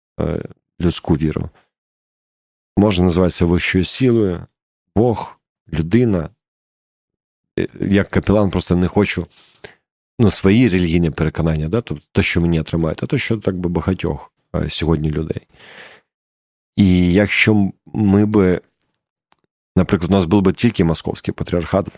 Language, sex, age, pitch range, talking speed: Ukrainian, male, 40-59, 85-100 Hz, 120 wpm